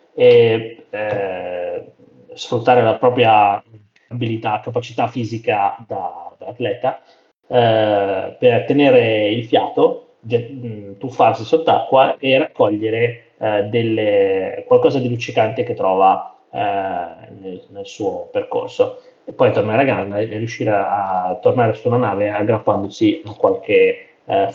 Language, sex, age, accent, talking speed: Italian, male, 30-49, native, 120 wpm